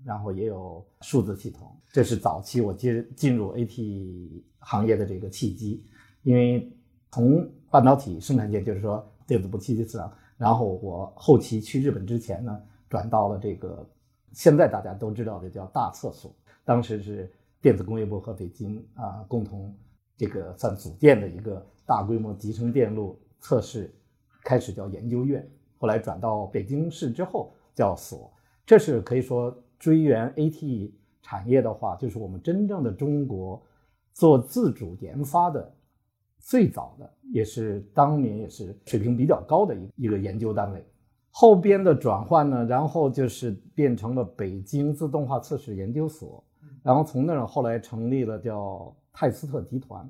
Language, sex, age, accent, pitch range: Chinese, male, 50-69, native, 105-135 Hz